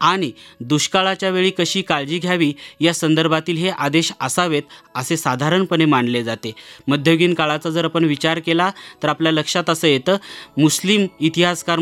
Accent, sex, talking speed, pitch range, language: native, male, 140 wpm, 150-180 Hz, Marathi